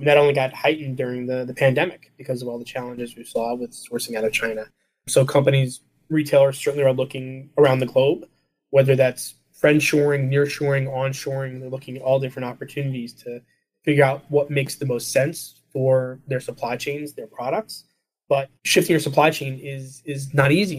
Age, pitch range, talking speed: 20-39, 125-140 Hz, 180 wpm